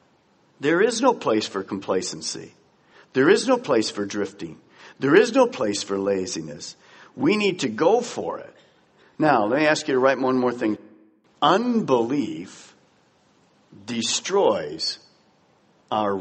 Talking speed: 135 wpm